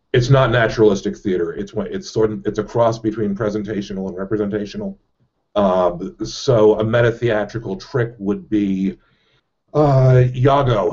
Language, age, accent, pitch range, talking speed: English, 50-69, American, 100-120 Hz, 130 wpm